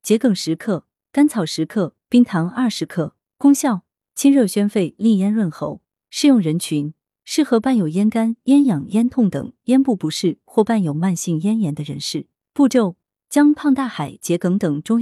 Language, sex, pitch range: Chinese, female, 165-240 Hz